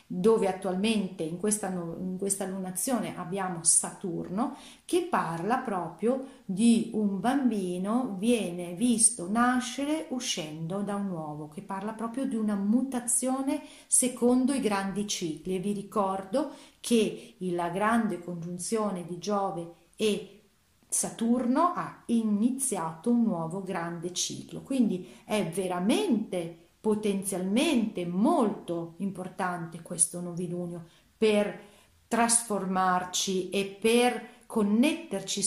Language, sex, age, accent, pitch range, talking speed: Italian, female, 40-59, native, 180-225 Hz, 105 wpm